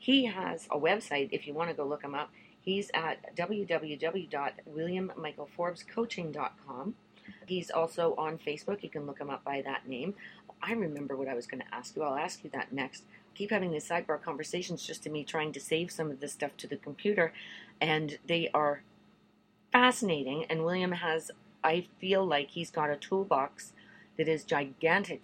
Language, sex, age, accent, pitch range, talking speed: English, female, 40-59, American, 140-170 Hz, 180 wpm